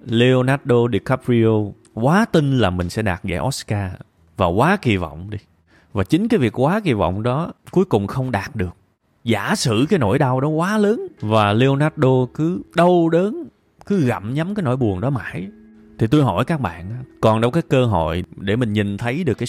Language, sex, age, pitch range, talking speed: Vietnamese, male, 20-39, 100-135 Hz, 200 wpm